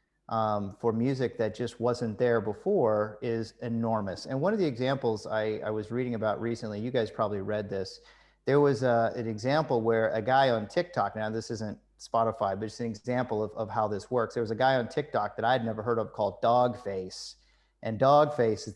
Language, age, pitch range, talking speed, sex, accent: English, 30-49, 110-130 Hz, 210 wpm, male, American